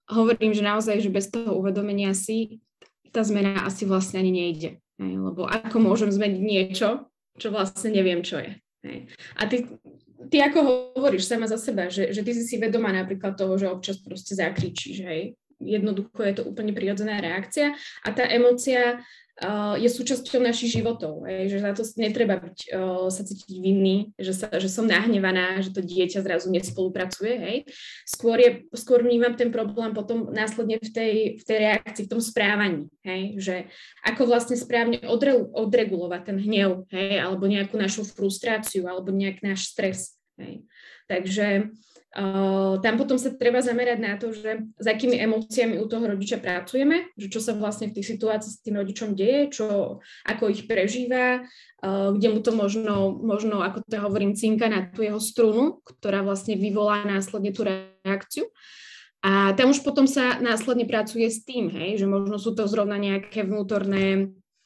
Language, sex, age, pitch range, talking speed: Slovak, female, 20-39, 195-230 Hz, 170 wpm